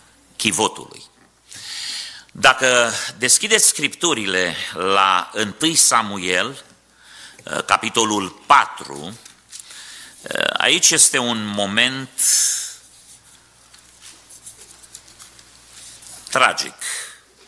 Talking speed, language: 50 wpm, Romanian